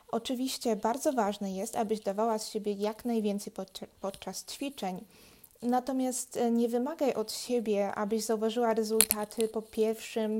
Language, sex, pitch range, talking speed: English, female, 205-235 Hz, 125 wpm